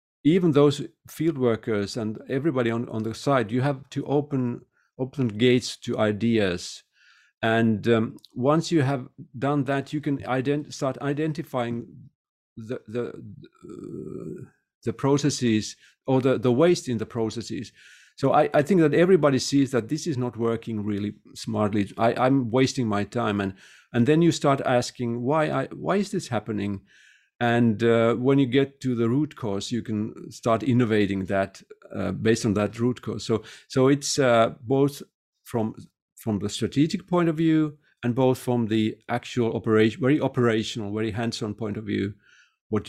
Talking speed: 165 wpm